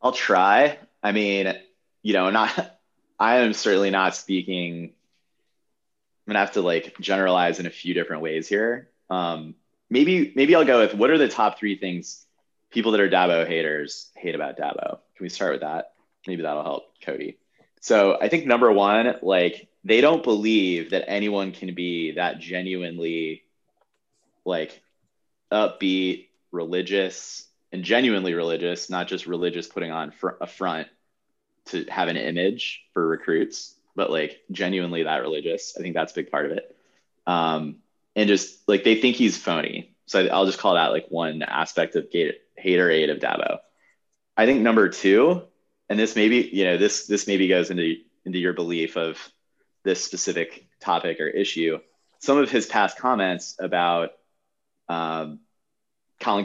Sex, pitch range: male, 85-100 Hz